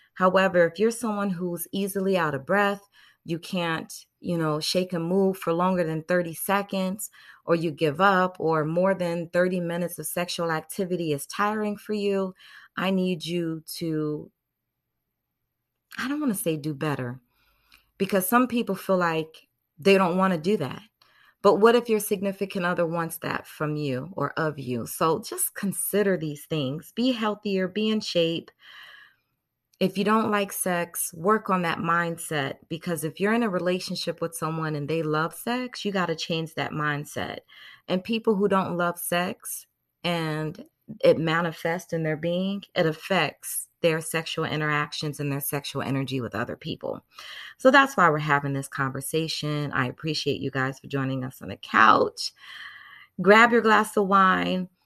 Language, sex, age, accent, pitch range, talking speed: English, female, 30-49, American, 155-195 Hz, 170 wpm